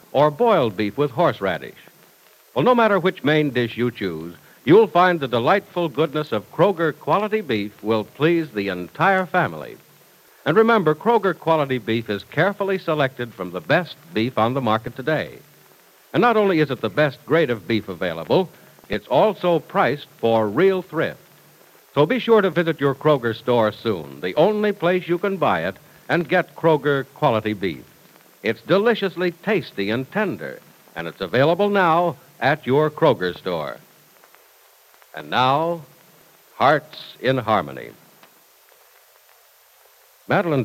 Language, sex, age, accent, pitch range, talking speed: English, male, 60-79, American, 105-170 Hz, 150 wpm